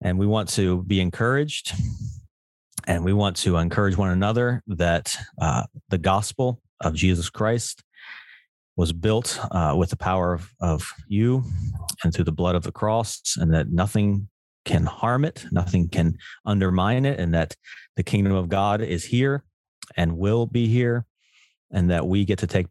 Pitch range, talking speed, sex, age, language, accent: 85-110 Hz, 170 wpm, male, 30-49, English, American